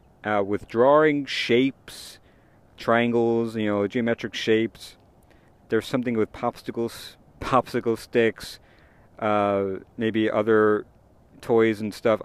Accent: American